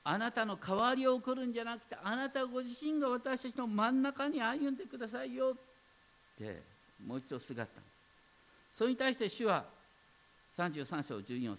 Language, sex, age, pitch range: Japanese, male, 50-69, 150-250 Hz